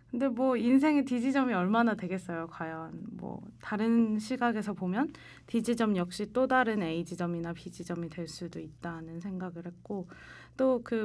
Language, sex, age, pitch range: Korean, female, 20-39, 175-235 Hz